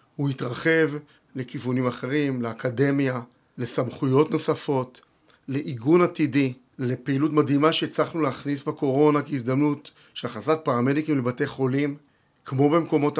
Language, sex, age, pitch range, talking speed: Hebrew, male, 40-59, 130-150 Hz, 100 wpm